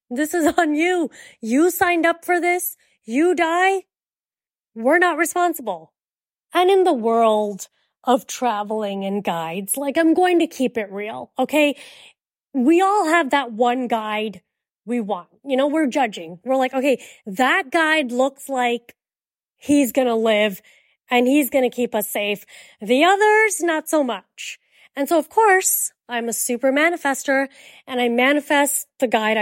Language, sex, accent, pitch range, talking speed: English, female, American, 220-325 Hz, 155 wpm